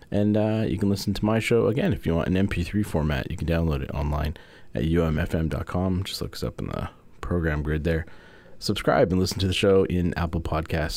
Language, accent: English, American